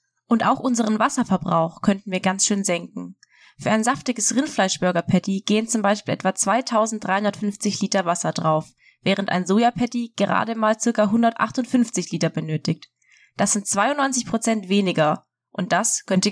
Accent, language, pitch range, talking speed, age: German, German, 175-220 Hz, 135 wpm, 20-39